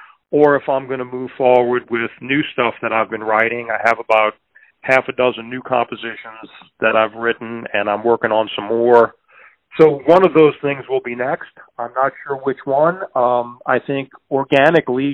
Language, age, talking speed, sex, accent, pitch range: English, 40-59, 190 wpm, male, American, 120-145 Hz